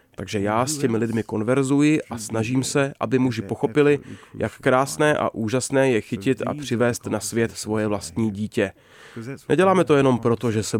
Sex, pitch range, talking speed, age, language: male, 110-130 Hz, 170 wpm, 30-49, Czech